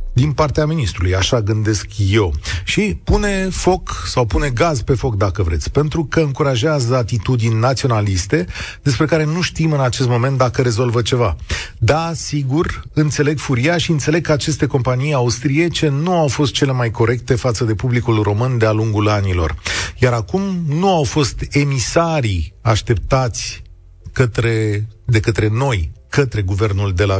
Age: 40-59